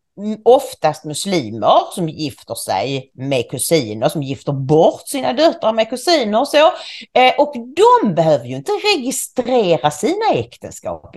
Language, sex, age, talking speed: English, female, 40-59, 135 wpm